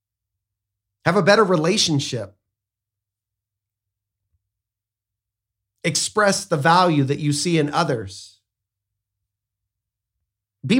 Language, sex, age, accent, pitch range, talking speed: English, male, 40-59, American, 100-170 Hz, 70 wpm